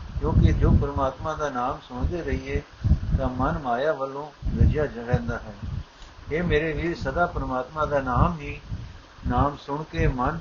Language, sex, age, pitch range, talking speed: Punjabi, male, 60-79, 120-155 Hz, 150 wpm